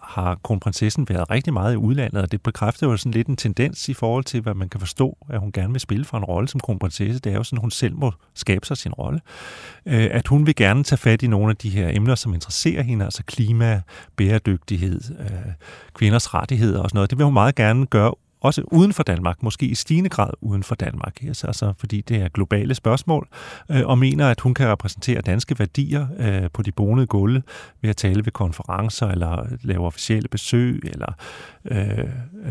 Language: Danish